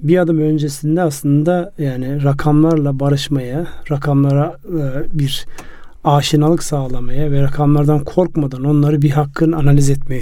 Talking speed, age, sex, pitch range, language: 110 wpm, 40-59, male, 145-165 Hz, Turkish